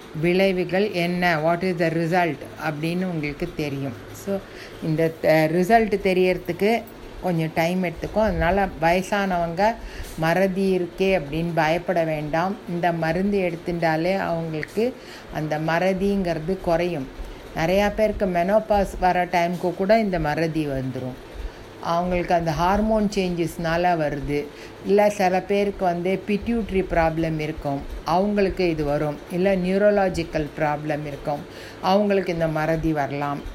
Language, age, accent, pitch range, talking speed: Tamil, 50-69, native, 155-190 Hz, 110 wpm